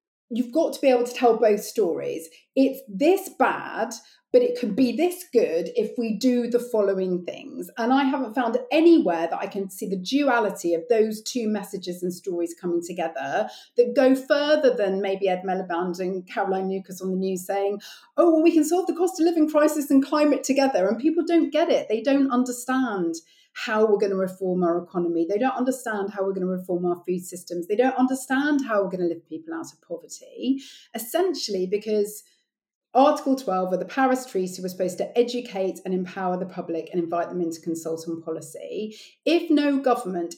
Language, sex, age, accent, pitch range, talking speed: English, female, 40-59, British, 185-270 Hz, 195 wpm